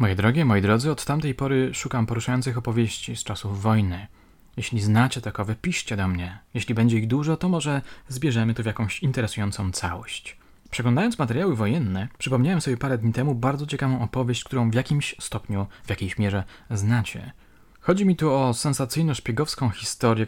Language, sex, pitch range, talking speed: Polish, male, 105-130 Hz, 165 wpm